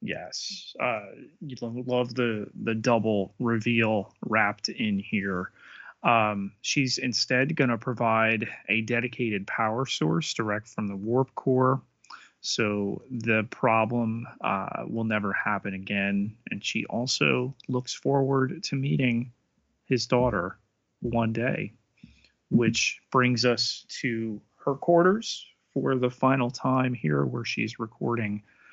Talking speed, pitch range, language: 125 wpm, 110-130 Hz, English